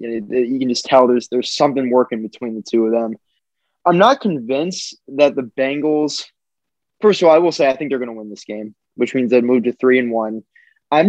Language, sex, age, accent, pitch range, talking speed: English, male, 20-39, American, 115-135 Hz, 235 wpm